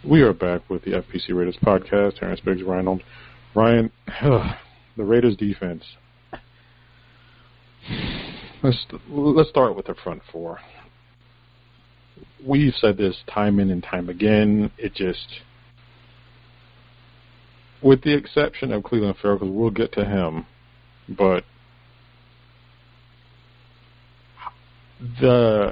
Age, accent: 50-69, American